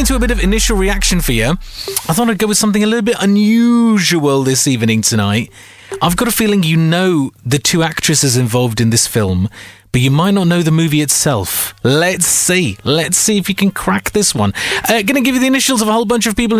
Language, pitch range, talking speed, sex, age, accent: English, 125-210 Hz, 230 wpm, male, 30-49, British